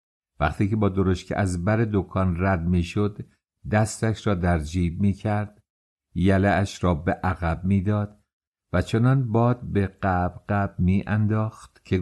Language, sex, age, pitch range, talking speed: English, male, 50-69, 90-115 Hz, 140 wpm